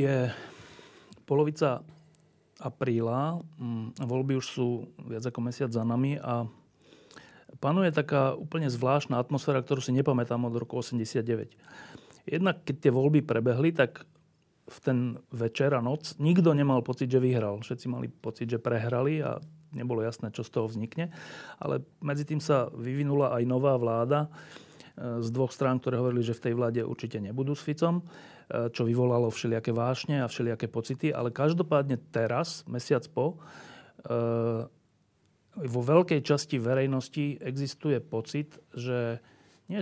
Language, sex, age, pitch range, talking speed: Slovak, male, 40-59, 120-145 Hz, 140 wpm